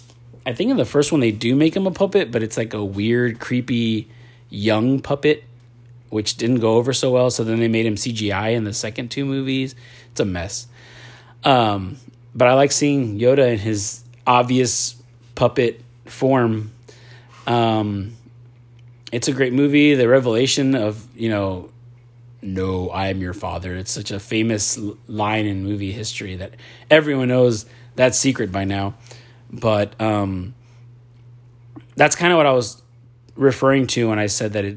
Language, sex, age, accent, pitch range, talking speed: English, male, 30-49, American, 110-125 Hz, 165 wpm